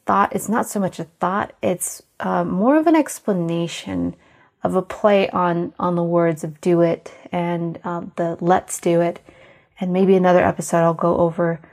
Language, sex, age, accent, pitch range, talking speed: English, female, 30-49, American, 170-205 Hz, 185 wpm